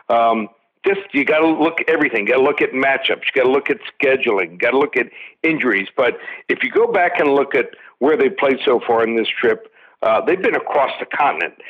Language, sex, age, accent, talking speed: English, male, 60-79, American, 235 wpm